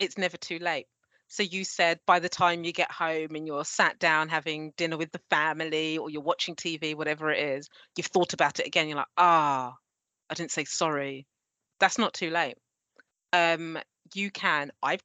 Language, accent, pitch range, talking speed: English, British, 160-195 Hz, 195 wpm